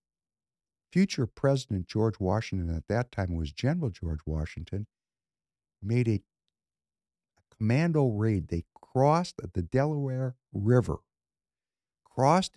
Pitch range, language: 100-145 Hz, English